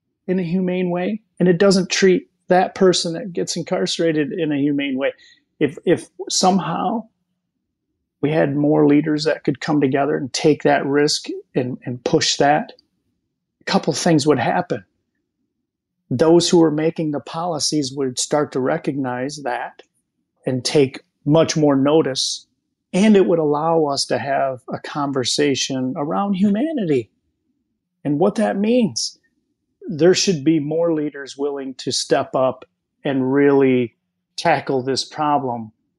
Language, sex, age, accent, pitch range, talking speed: English, male, 40-59, American, 130-165 Hz, 145 wpm